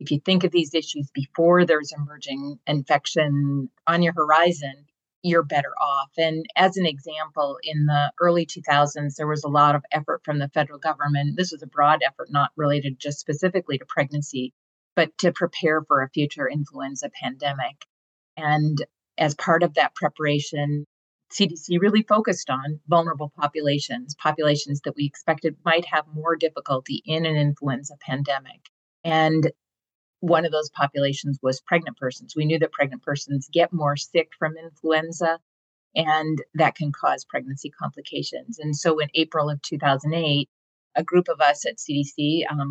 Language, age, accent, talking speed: English, 30-49, American, 160 wpm